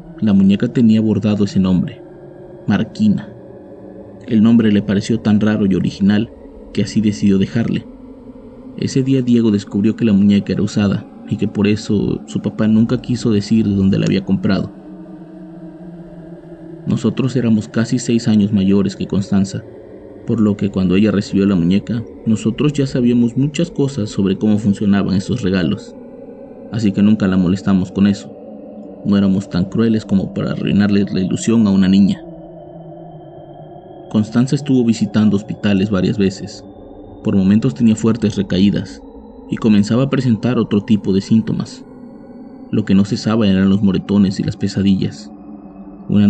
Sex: male